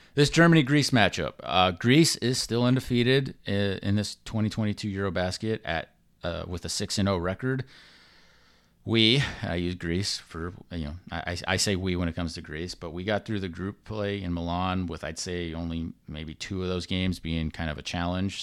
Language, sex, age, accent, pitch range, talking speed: English, male, 30-49, American, 90-110 Hz, 185 wpm